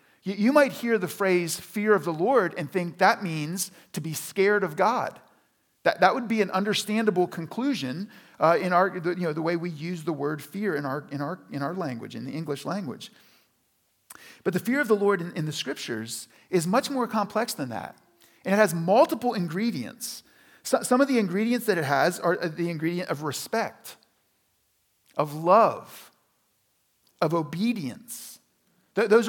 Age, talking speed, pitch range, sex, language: 40-59, 180 wpm, 170-225 Hz, male, English